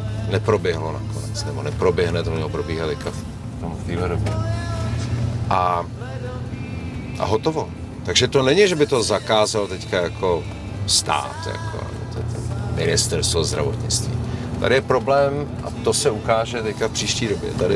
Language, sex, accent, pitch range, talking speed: Czech, male, native, 100-115 Hz, 120 wpm